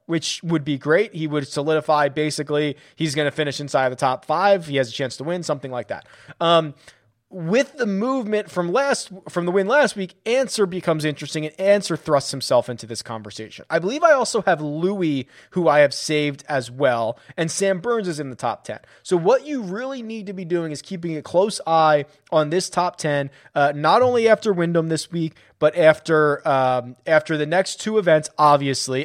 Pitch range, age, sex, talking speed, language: 145-185 Hz, 20-39, male, 205 wpm, English